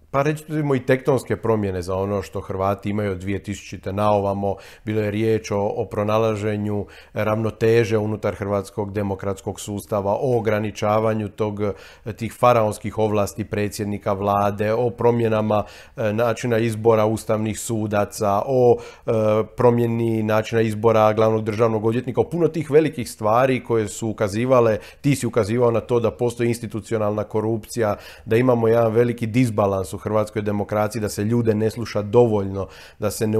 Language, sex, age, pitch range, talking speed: Croatian, male, 40-59, 105-125 Hz, 145 wpm